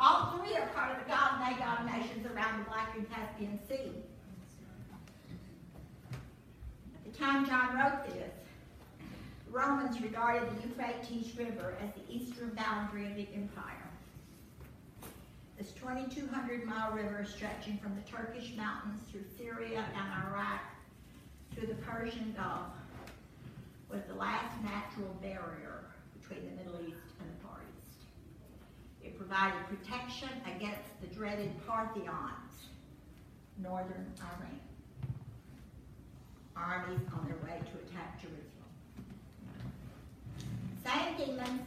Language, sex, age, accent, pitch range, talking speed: English, female, 50-69, American, 200-255 Hz, 110 wpm